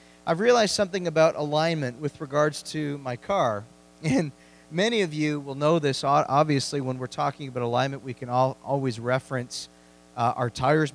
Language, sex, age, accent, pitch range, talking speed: English, male, 40-59, American, 125-155 Hz, 170 wpm